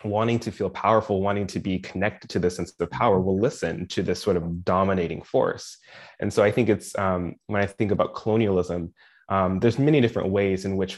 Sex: male